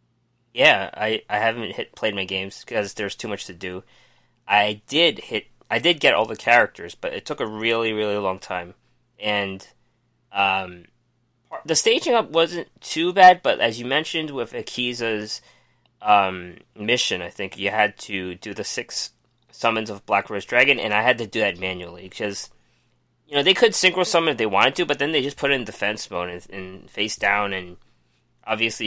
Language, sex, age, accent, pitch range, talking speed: English, male, 20-39, American, 100-130 Hz, 195 wpm